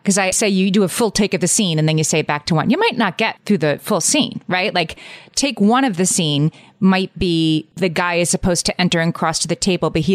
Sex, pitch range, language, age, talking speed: female, 160-195 Hz, English, 30-49, 285 wpm